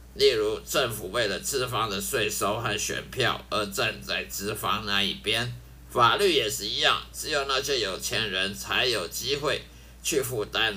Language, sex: Chinese, male